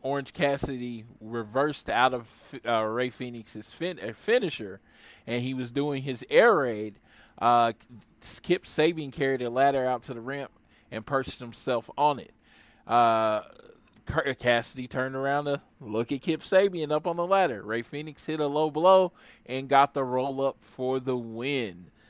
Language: English